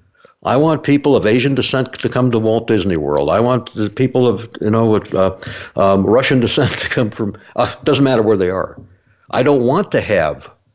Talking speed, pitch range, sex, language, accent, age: 205 wpm, 95-125 Hz, male, English, American, 60-79